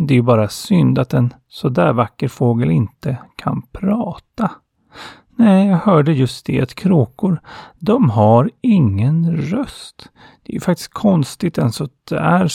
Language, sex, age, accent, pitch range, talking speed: Swedish, male, 30-49, native, 120-170 Hz, 145 wpm